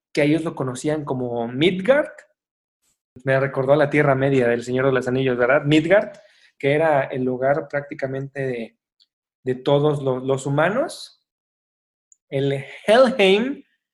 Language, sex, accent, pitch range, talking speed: Spanish, male, Mexican, 130-155 Hz, 140 wpm